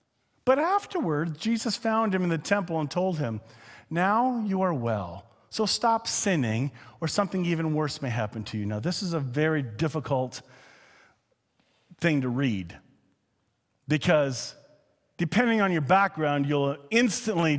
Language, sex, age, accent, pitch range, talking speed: English, male, 40-59, American, 115-170 Hz, 145 wpm